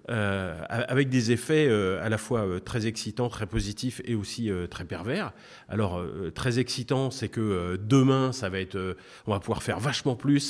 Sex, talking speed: male, 205 wpm